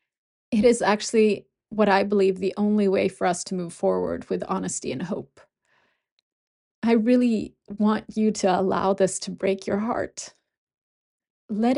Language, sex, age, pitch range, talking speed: English, female, 30-49, 200-235 Hz, 155 wpm